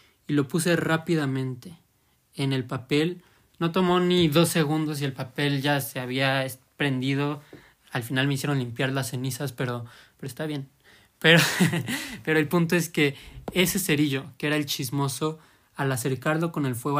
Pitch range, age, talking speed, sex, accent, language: 135-160 Hz, 20-39, 165 wpm, male, Mexican, Spanish